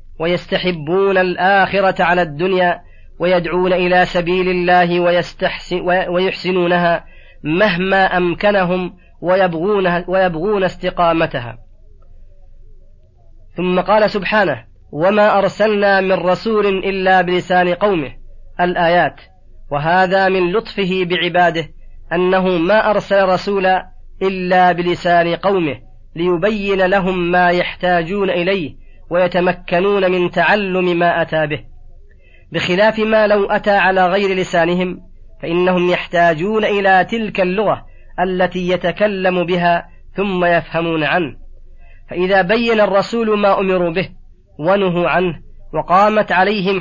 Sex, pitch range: female, 170-190 Hz